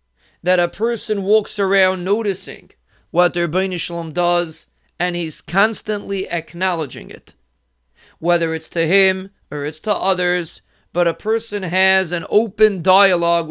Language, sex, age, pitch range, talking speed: English, male, 30-49, 165-205 Hz, 140 wpm